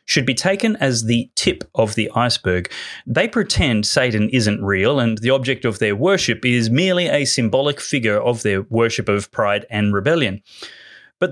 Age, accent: 30-49, Australian